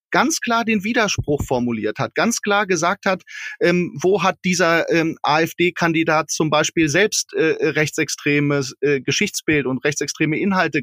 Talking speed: 145 wpm